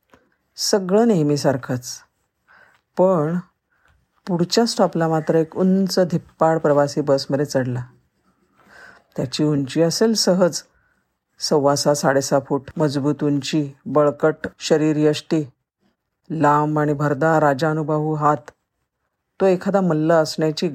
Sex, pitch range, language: female, 150-180 Hz, Marathi